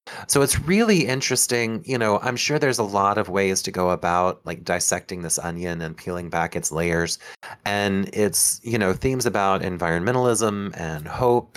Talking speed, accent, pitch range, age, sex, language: 175 wpm, American, 90-110 Hz, 30-49, male, English